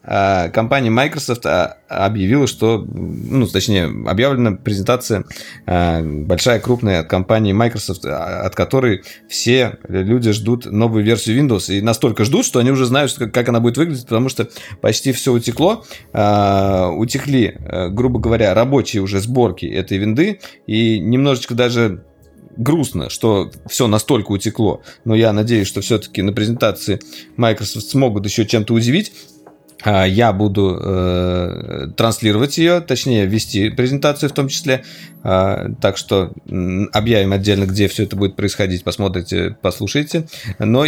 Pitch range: 100-125 Hz